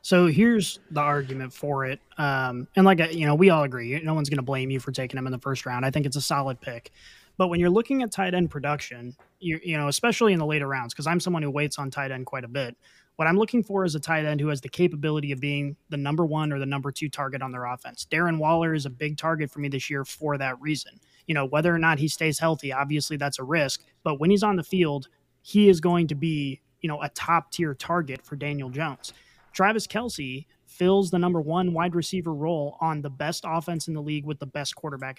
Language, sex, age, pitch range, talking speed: English, male, 20-39, 140-170 Hz, 255 wpm